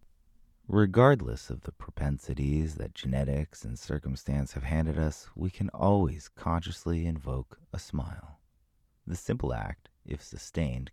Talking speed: 125 wpm